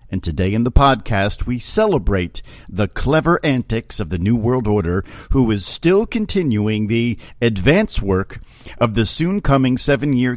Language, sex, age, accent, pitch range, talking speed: English, male, 50-69, American, 95-130 Hz, 150 wpm